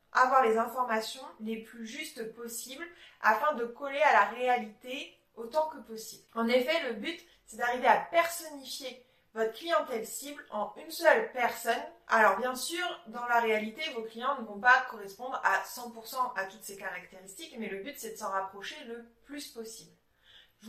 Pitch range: 220-275 Hz